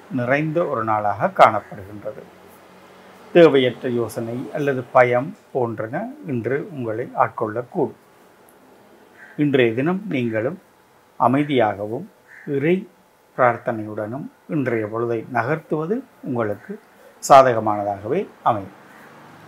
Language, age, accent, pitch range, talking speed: Tamil, 50-69, native, 115-160 Hz, 75 wpm